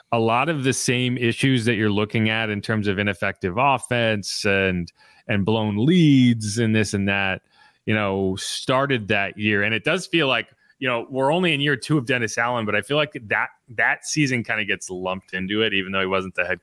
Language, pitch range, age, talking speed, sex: English, 105-130 Hz, 30-49, 225 wpm, male